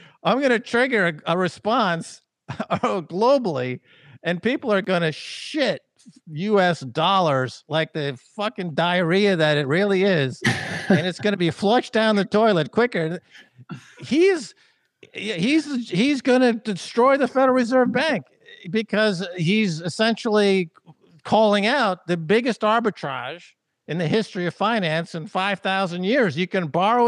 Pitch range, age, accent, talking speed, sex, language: 170-220 Hz, 50-69, American, 135 wpm, male, English